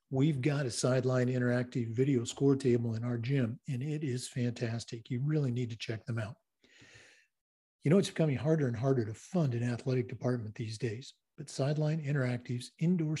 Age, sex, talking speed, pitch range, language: 50-69, male, 180 wpm, 120-145 Hz, English